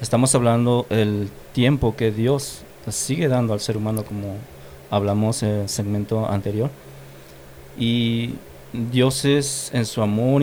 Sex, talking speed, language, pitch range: male, 130 wpm, English, 105-125 Hz